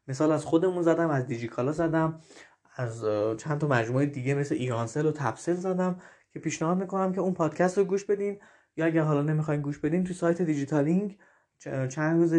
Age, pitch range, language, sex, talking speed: 20-39, 140-175 Hz, Persian, male, 180 wpm